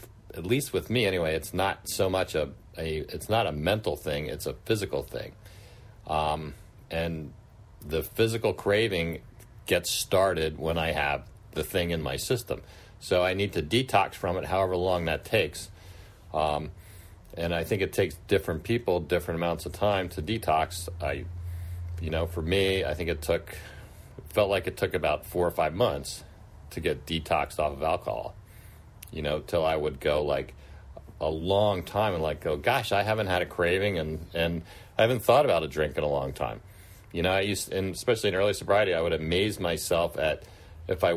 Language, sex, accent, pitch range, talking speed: English, male, American, 85-100 Hz, 190 wpm